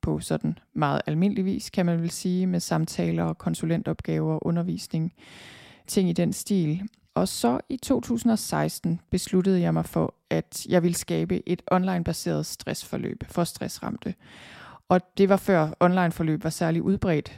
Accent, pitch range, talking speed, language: native, 165-195 Hz, 155 wpm, Danish